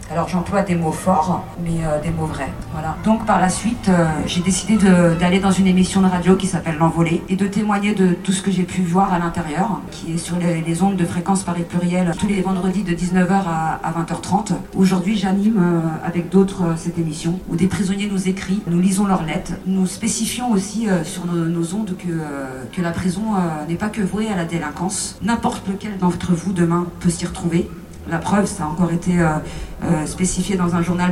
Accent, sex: French, female